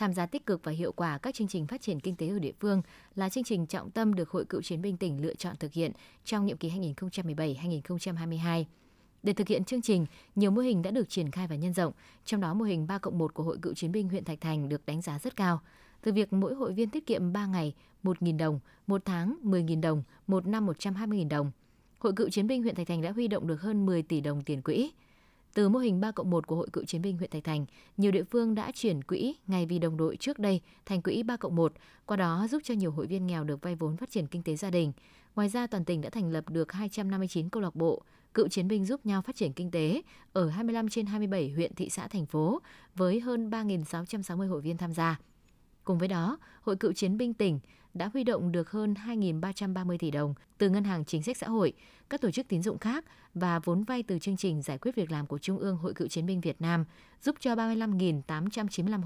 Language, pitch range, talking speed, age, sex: Vietnamese, 165-210 Hz, 245 wpm, 20-39, female